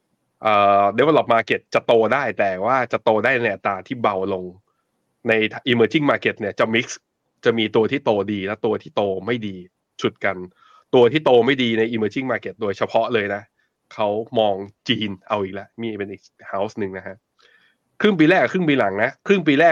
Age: 20-39